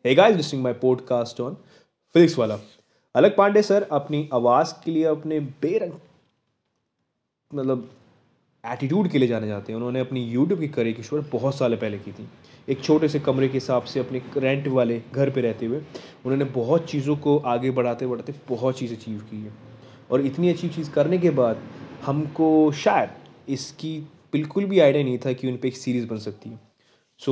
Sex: male